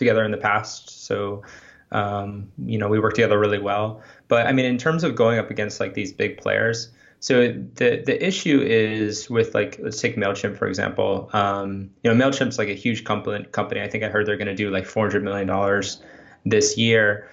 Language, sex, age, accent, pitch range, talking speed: English, male, 20-39, American, 100-120 Hz, 210 wpm